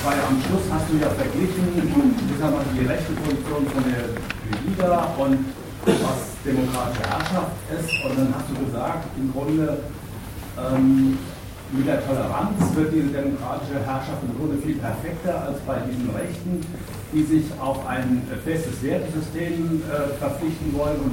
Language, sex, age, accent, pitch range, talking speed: German, female, 60-79, German, 105-150 Hz, 150 wpm